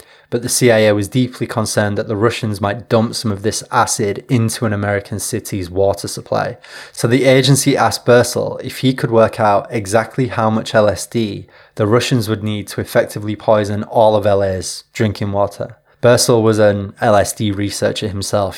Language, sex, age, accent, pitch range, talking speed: English, male, 20-39, British, 100-120 Hz, 170 wpm